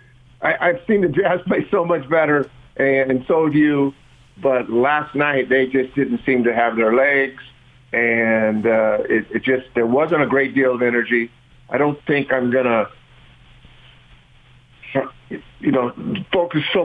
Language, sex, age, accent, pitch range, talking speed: English, male, 50-69, American, 115-130 Hz, 160 wpm